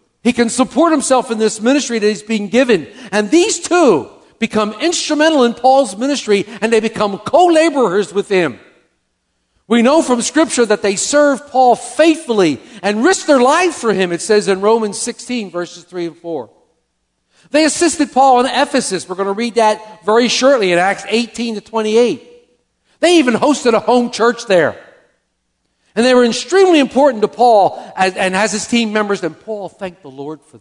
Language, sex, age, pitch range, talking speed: English, male, 50-69, 155-240 Hz, 180 wpm